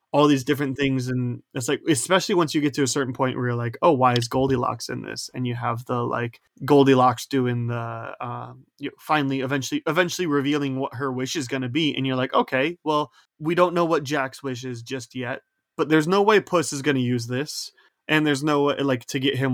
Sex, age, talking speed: male, 20-39, 245 wpm